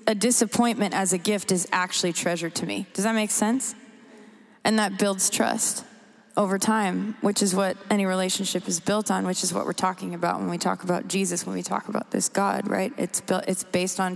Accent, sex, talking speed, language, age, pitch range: American, female, 215 wpm, English, 20-39, 180-210 Hz